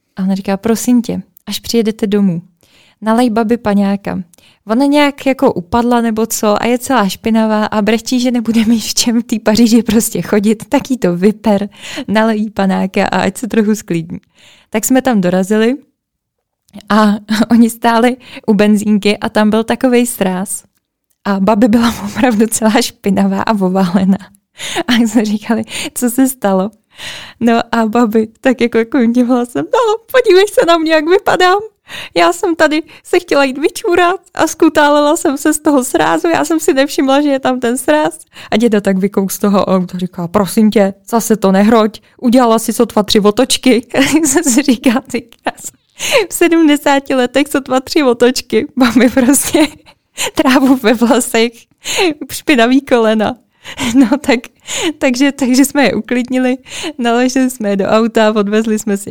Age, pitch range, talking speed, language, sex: 20-39, 210-270 Hz, 160 wpm, Czech, female